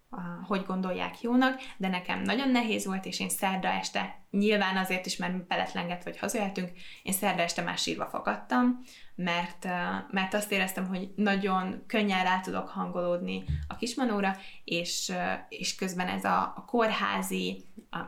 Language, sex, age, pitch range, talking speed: Hungarian, female, 20-39, 180-210 Hz, 150 wpm